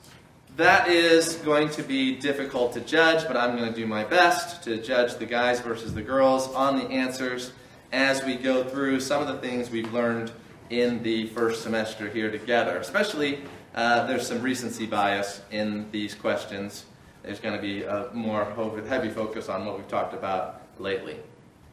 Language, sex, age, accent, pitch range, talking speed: English, male, 30-49, American, 110-145 Hz, 175 wpm